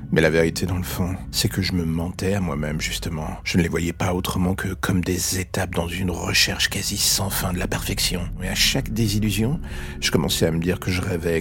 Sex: male